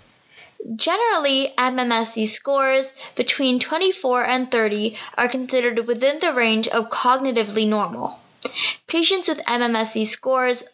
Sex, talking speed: female, 105 wpm